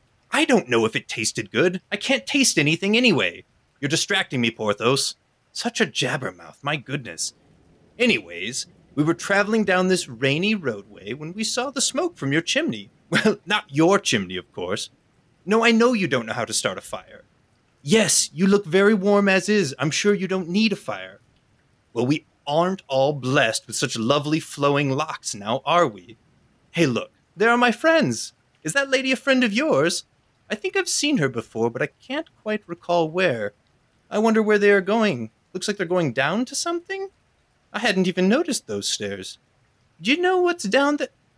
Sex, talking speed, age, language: male, 190 wpm, 30-49, English